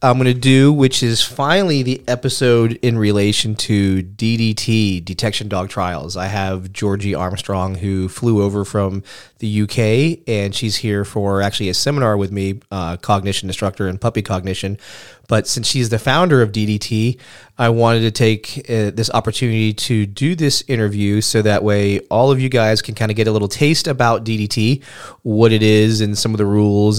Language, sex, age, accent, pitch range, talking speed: English, male, 30-49, American, 100-120 Hz, 185 wpm